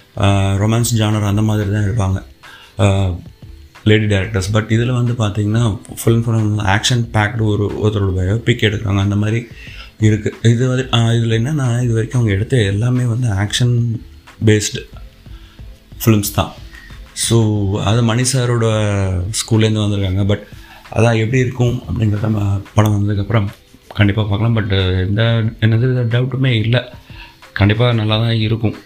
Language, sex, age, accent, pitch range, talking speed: Tamil, male, 30-49, native, 105-115 Hz, 120 wpm